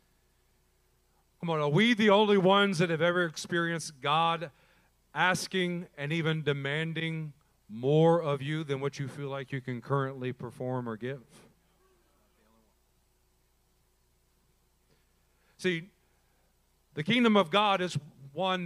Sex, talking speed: male, 120 wpm